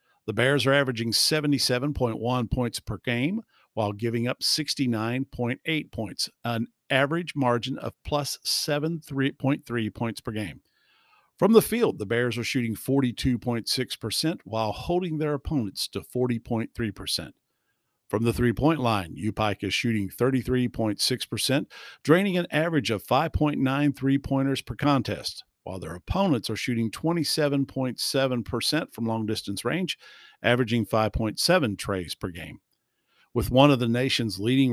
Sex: male